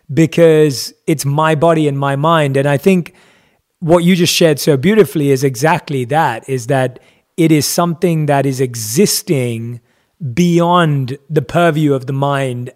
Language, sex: English, male